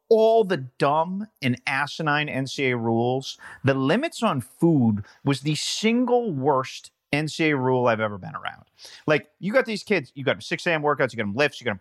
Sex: male